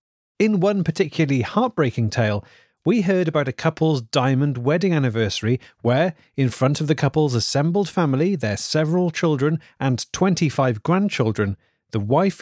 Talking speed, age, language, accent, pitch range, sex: 140 wpm, 30-49, English, British, 120-165 Hz, male